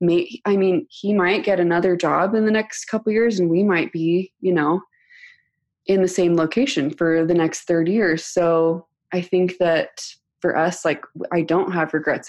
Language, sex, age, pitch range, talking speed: English, female, 20-39, 160-185 Hz, 190 wpm